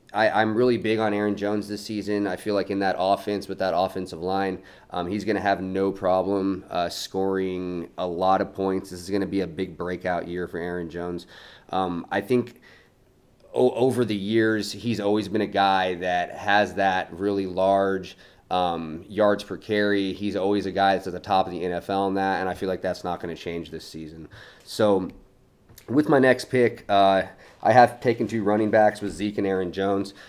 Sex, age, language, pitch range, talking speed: male, 30-49, English, 95-105 Hz, 200 wpm